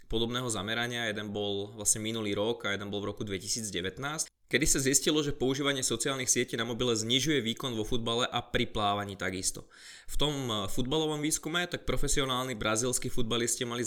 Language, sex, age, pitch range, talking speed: Slovak, male, 20-39, 105-125 Hz, 170 wpm